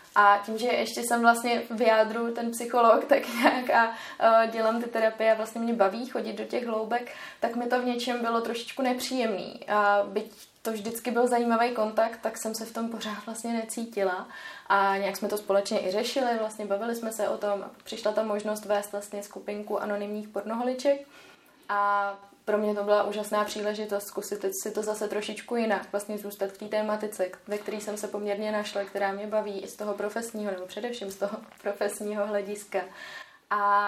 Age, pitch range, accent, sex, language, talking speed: 20-39, 195-220 Hz, native, female, Czech, 190 wpm